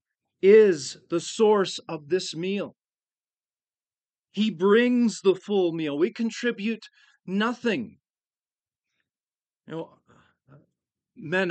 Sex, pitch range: male, 160-215 Hz